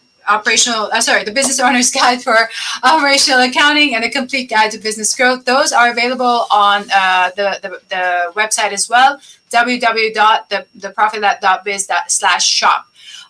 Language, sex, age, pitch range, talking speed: English, female, 20-39, 200-255 Hz, 135 wpm